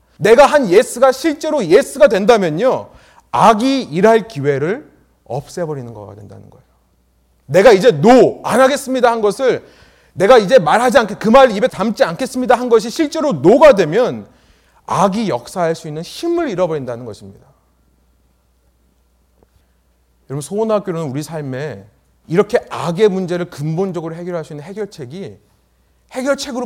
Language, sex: Korean, male